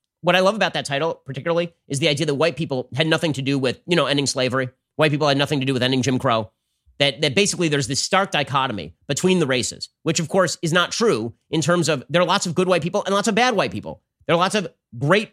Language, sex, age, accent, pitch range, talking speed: English, male, 30-49, American, 135-190 Hz, 270 wpm